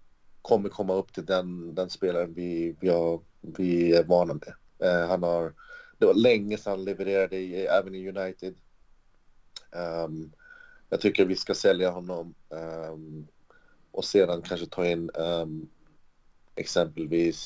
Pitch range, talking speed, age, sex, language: 85-100 Hz, 140 wpm, 30-49, male, Swedish